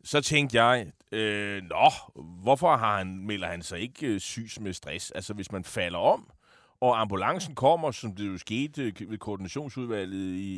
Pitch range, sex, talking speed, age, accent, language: 95-135 Hz, male, 175 wpm, 30-49, native, Danish